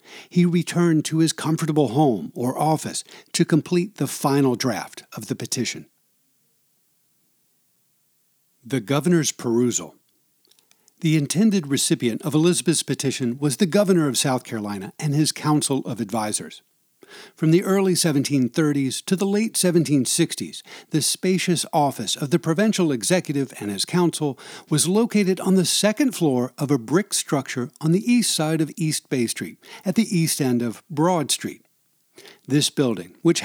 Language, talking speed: English, 145 wpm